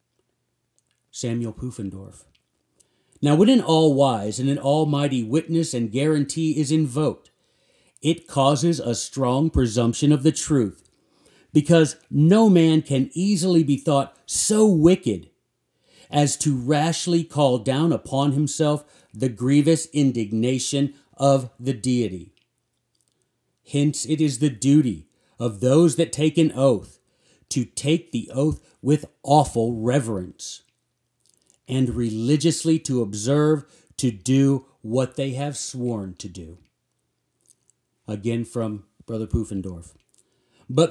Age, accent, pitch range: 50-69, American, 120-155 Hz